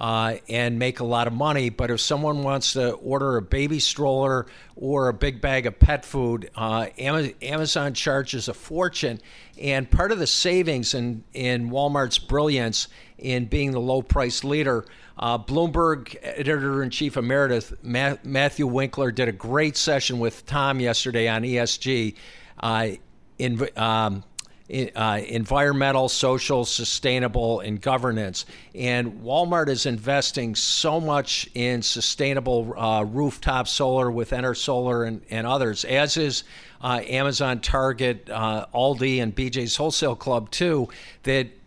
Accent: American